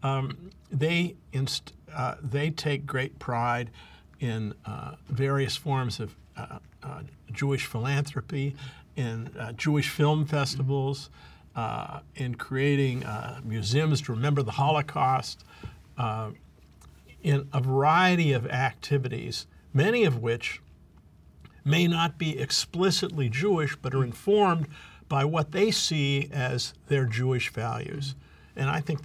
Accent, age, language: American, 50-69, English